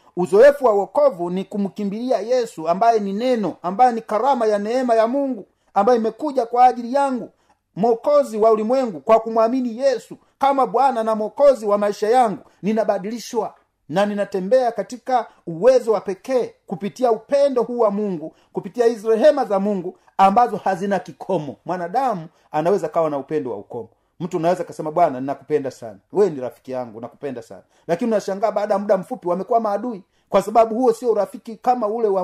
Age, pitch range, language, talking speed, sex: 40-59, 185-250 Hz, Swahili, 165 wpm, male